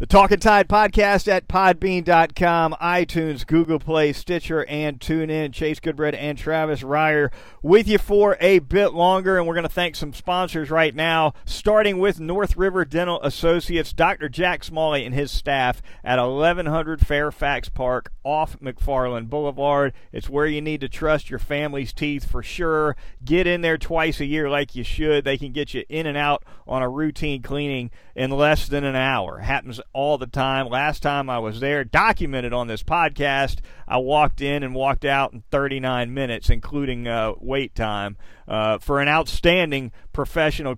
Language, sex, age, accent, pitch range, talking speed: English, male, 40-59, American, 135-160 Hz, 175 wpm